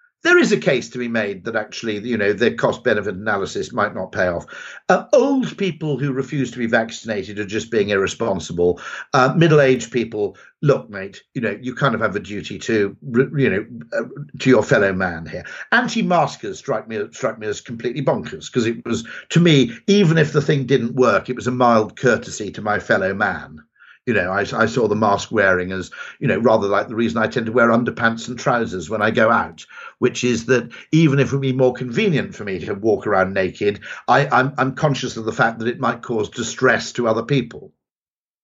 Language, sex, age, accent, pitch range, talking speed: English, male, 50-69, British, 115-160 Hz, 210 wpm